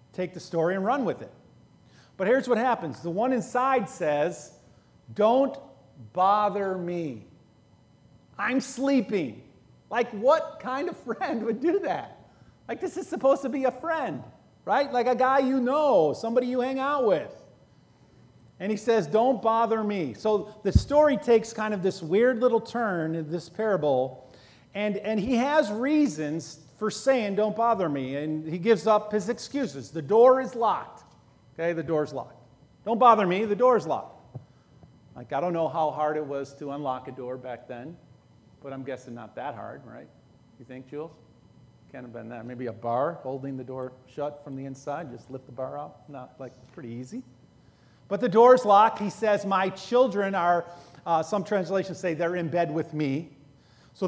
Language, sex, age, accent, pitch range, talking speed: English, male, 40-59, American, 140-230 Hz, 180 wpm